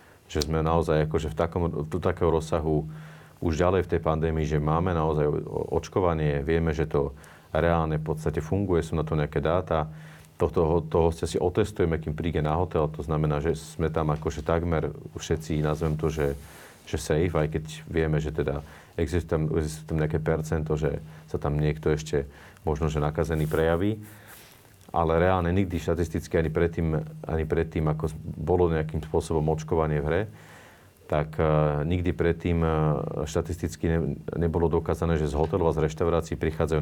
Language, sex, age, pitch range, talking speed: Slovak, male, 40-59, 75-85 Hz, 160 wpm